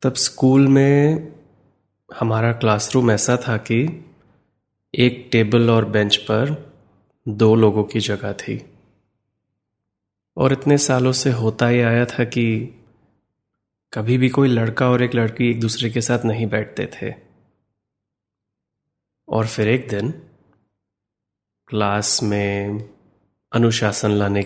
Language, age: Hindi, 30-49